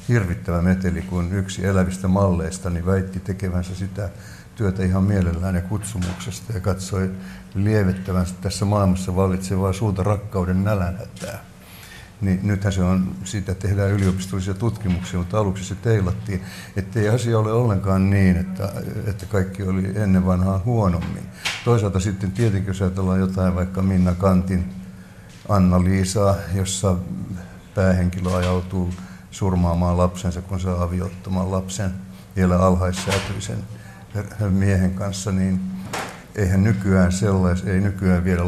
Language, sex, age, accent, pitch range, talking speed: Finnish, male, 60-79, native, 90-100 Hz, 125 wpm